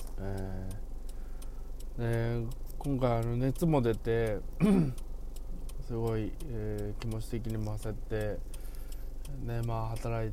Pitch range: 105-130 Hz